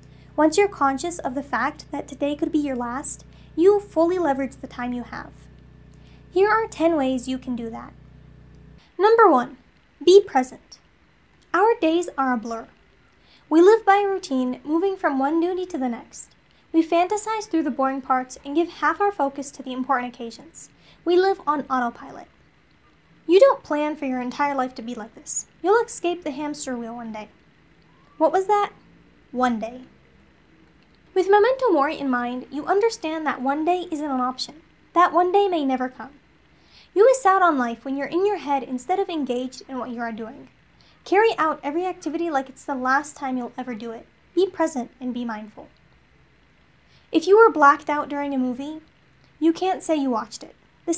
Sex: female